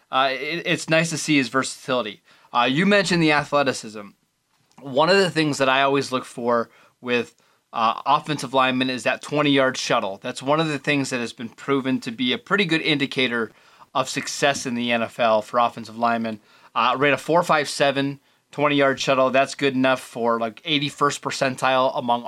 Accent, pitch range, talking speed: American, 125-150 Hz, 180 wpm